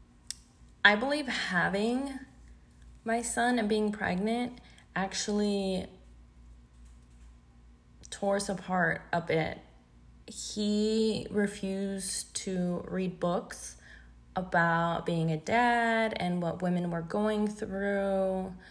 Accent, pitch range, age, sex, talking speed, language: American, 165-195 Hz, 20-39, female, 95 wpm, English